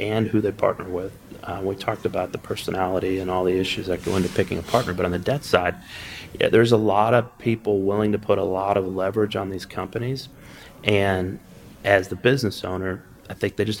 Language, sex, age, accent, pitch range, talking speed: English, male, 30-49, American, 95-100 Hz, 220 wpm